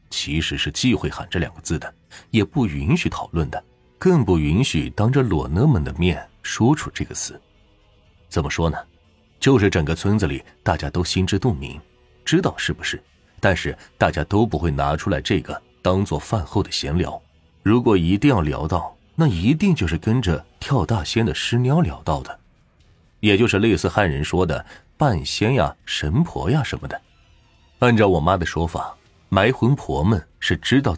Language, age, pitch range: Chinese, 30-49, 80-105 Hz